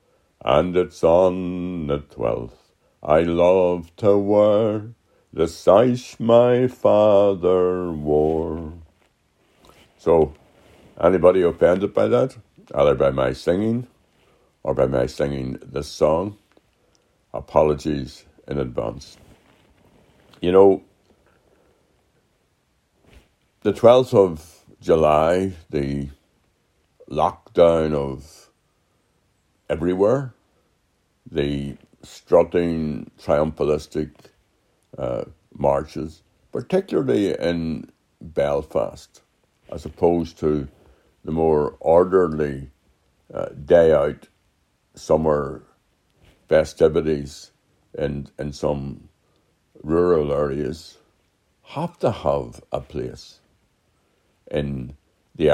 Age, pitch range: 60-79, 75-90 Hz